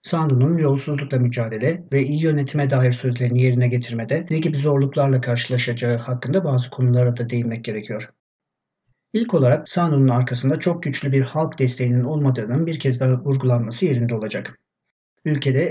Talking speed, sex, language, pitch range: 140 wpm, male, Turkish, 125-155 Hz